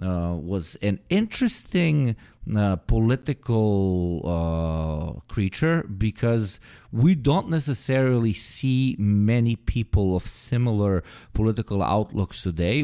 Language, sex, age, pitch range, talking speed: English, male, 30-49, 90-115 Hz, 95 wpm